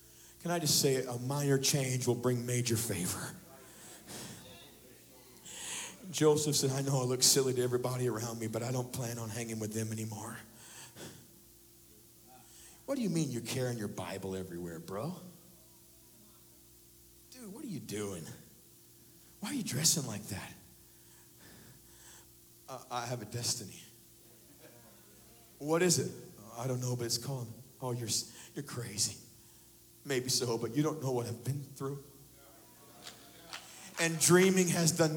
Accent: American